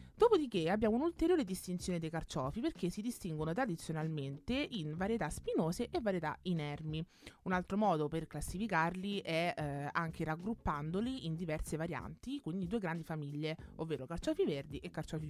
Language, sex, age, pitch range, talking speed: Italian, female, 30-49, 155-200 Hz, 145 wpm